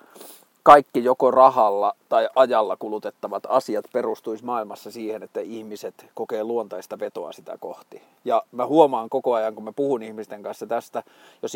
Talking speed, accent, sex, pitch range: 150 wpm, native, male, 115-135 Hz